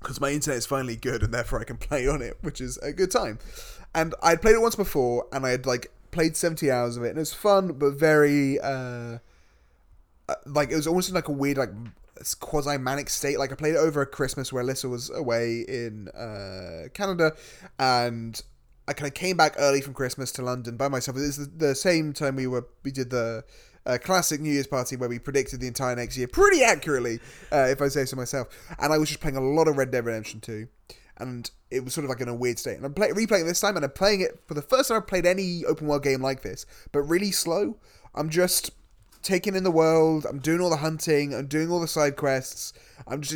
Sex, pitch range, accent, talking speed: male, 125-160 Hz, British, 245 wpm